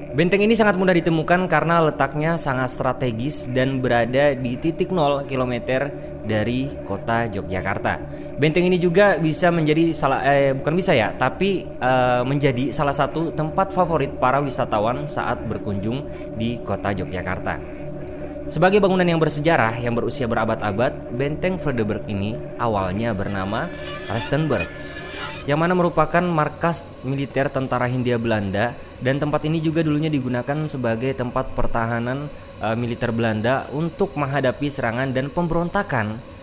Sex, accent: male, native